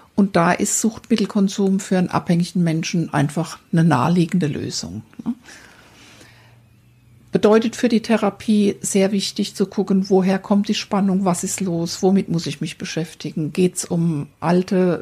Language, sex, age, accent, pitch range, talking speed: German, female, 60-79, German, 170-210 Hz, 145 wpm